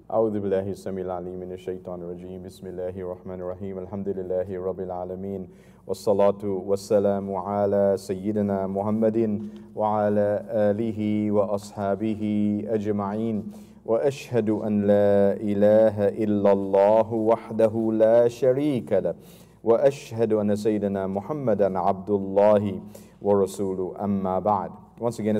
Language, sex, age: English, male, 40-59